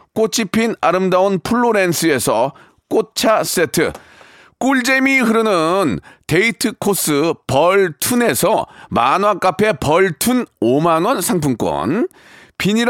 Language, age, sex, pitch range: Korean, 40-59, male, 180-225 Hz